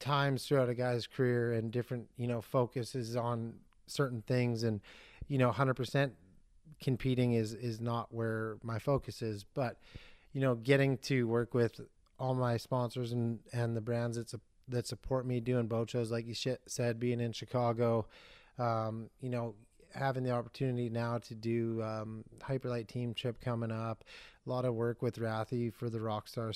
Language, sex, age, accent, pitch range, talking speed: English, male, 30-49, American, 115-130 Hz, 180 wpm